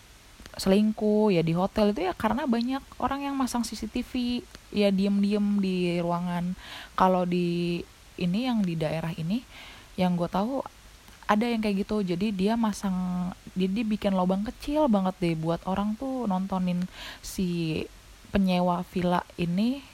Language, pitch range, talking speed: Indonesian, 160-205 Hz, 145 wpm